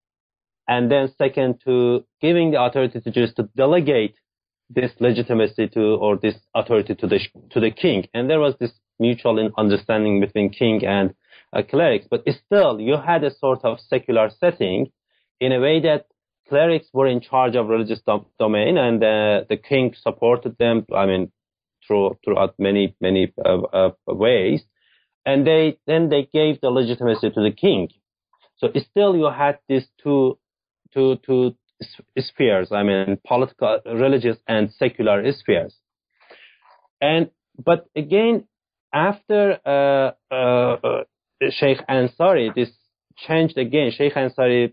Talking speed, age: 145 wpm, 30-49